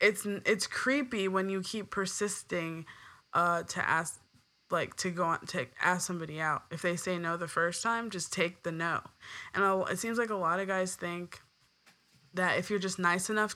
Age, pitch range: 20-39, 160-195 Hz